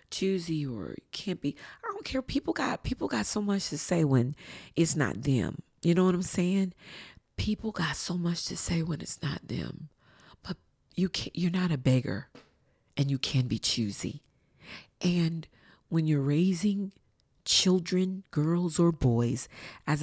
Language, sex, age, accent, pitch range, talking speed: English, female, 40-59, American, 140-190 Hz, 165 wpm